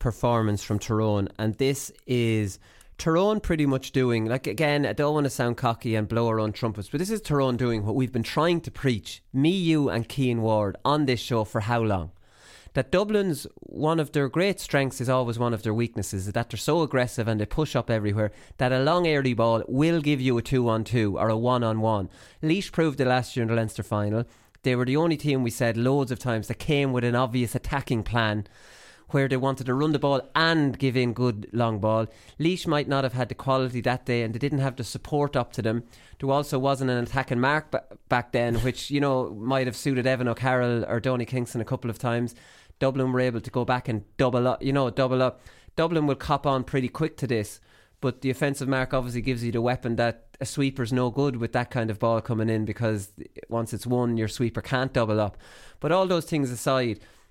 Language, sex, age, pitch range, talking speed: English, male, 30-49, 115-135 Hz, 230 wpm